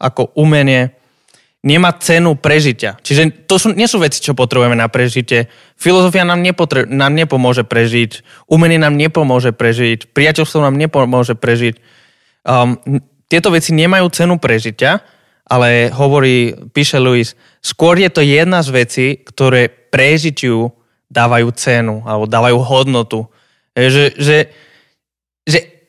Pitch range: 120-155 Hz